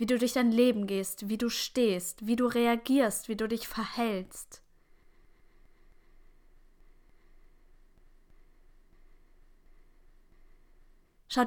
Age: 20-39